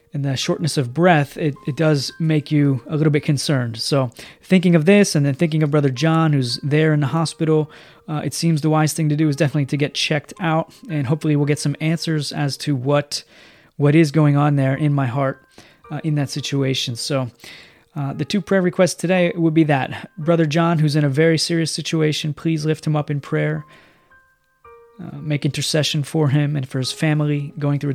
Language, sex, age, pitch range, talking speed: English, male, 30-49, 145-165 Hz, 215 wpm